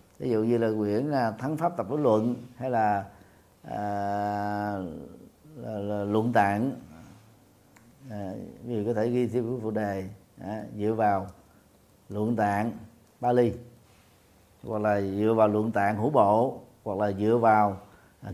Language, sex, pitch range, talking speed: Vietnamese, male, 105-125 Hz, 145 wpm